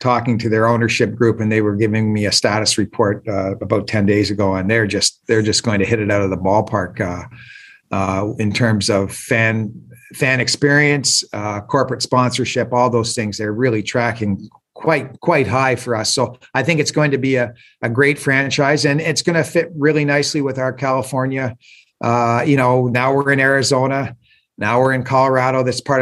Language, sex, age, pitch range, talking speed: English, male, 40-59, 115-140 Hz, 200 wpm